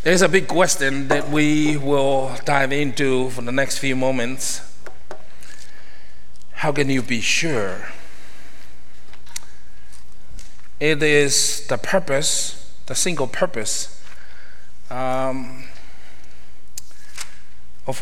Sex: male